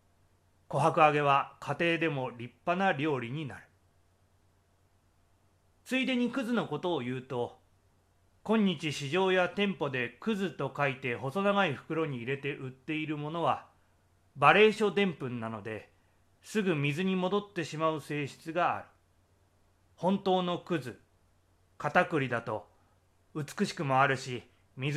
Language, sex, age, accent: Japanese, male, 30-49, native